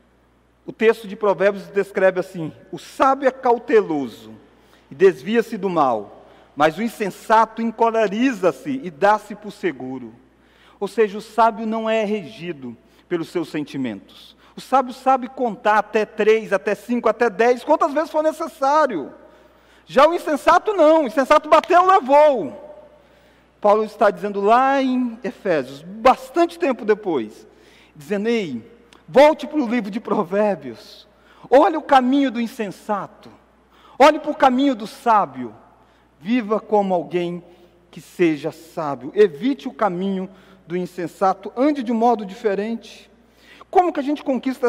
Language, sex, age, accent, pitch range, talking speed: Portuguese, male, 40-59, Brazilian, 195-260 Hz, 140 wpm